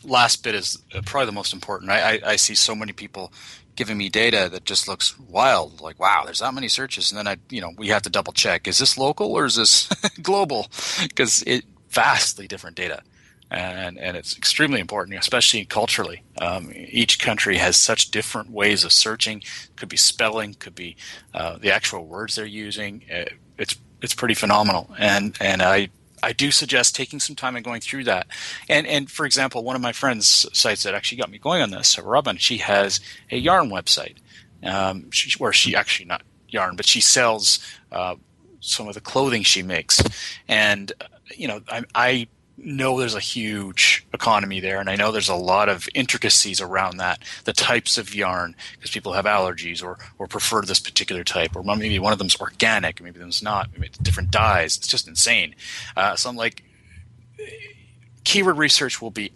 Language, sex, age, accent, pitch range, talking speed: English, male, 30-49, American, 95-125 Hz, 195 wpm